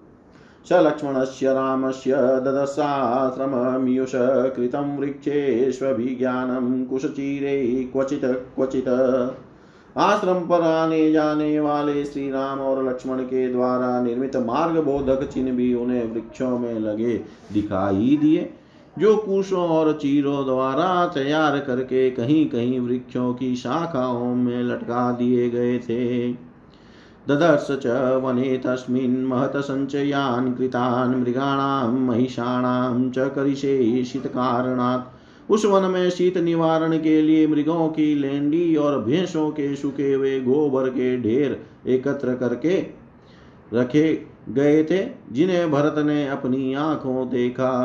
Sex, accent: male, native